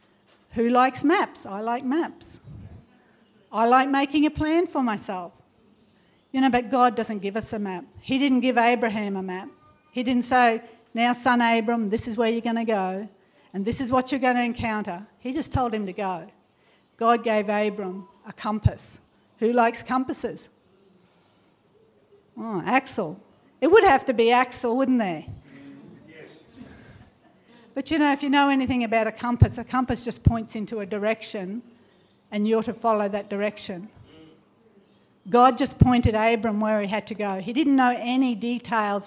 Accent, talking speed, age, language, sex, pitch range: Australian, 170 wpm, 50-69, English, female, 210-250 Hz